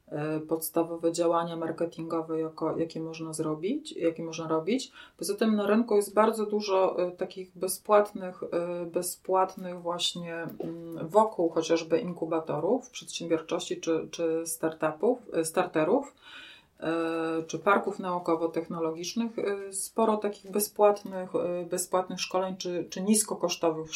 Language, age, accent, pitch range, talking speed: Polish, 30-49, native, 170-205 Hz, 95 wpm